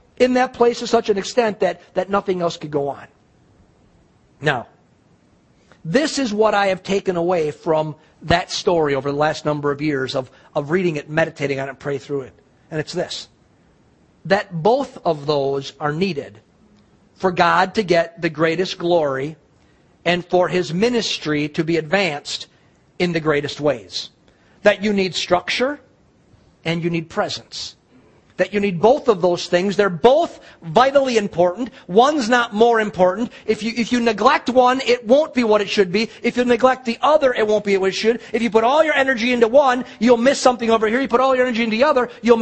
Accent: American